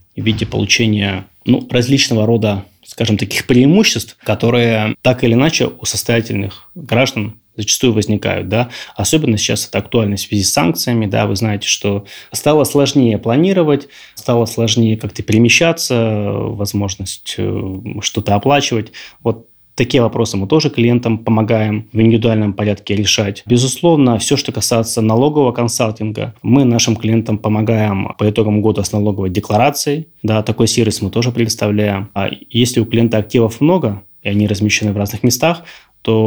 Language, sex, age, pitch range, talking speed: Russian, male, 20-39, 105-120 Hz, 145 wpm